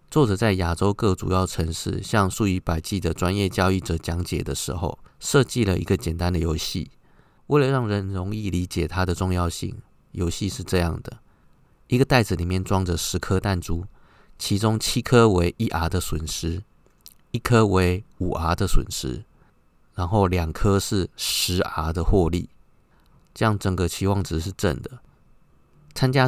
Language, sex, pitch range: Chinese, male, 85-100 Hz